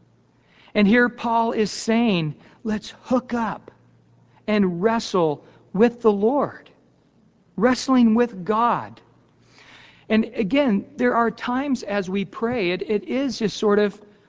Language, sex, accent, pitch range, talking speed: English, male, American, 165-220 Hz, 125 wpm